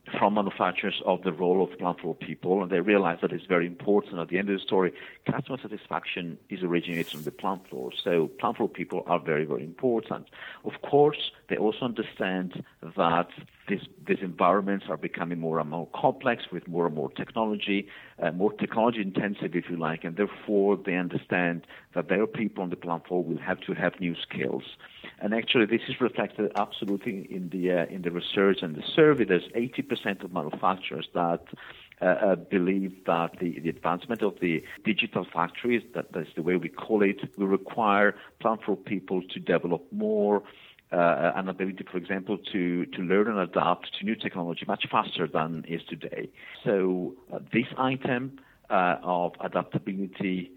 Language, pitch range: English, 85-105 Hz